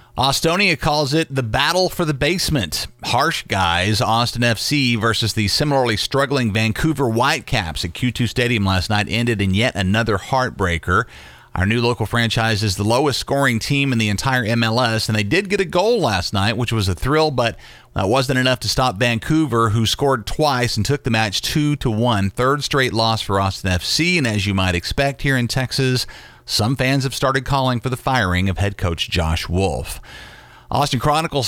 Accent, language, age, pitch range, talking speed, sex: American, English, 40-59, 110-135 Hz, 185 wpm, male